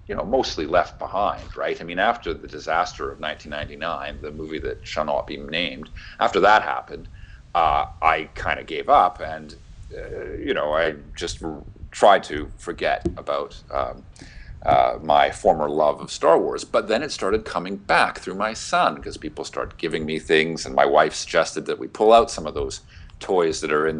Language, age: English, 40-59